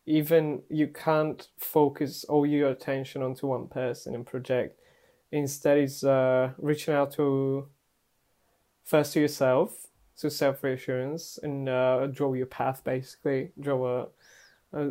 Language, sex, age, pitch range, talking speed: English, male, 20-39, 130-145 Hz, 130 wpm